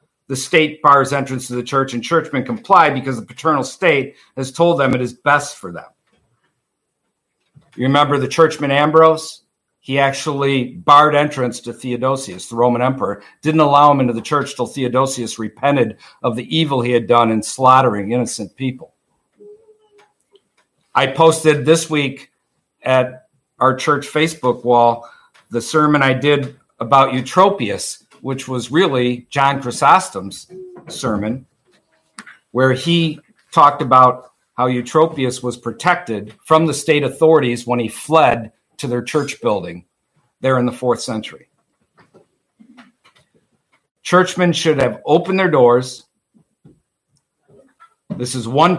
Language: English